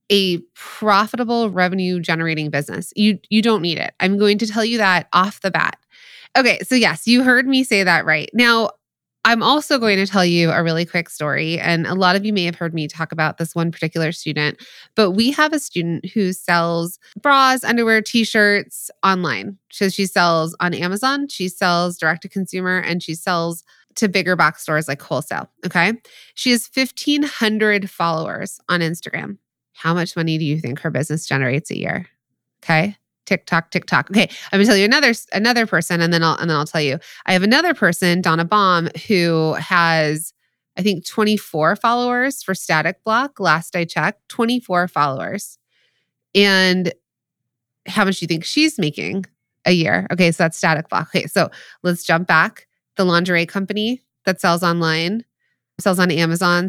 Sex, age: female, 20-39